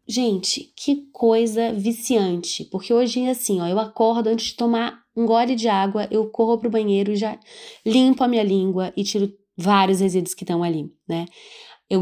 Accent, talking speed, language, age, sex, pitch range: Brazilian, 185 wpm, Portuguese, 20-39, female, 180-230 Hz